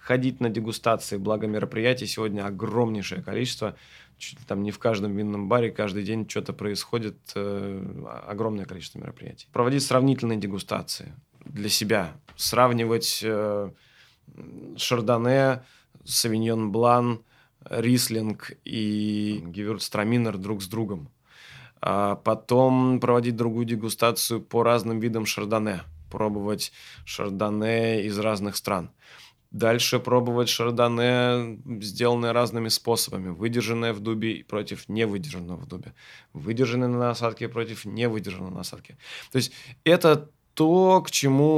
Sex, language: male, Russian